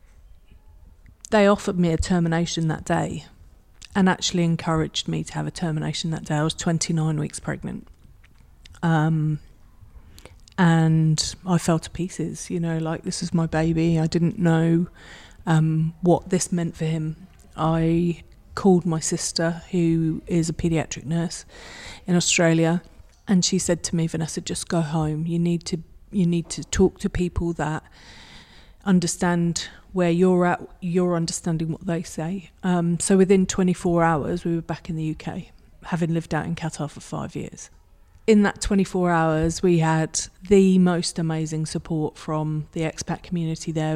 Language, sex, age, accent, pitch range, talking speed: English, female, 30-49, British, 160-180 Hz, 155 wpm